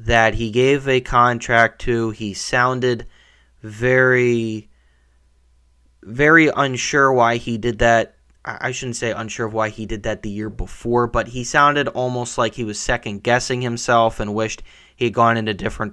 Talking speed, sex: 165 wpm, male